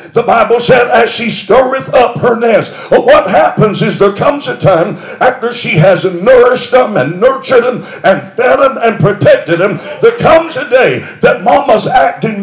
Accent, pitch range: American, 195-275 Hz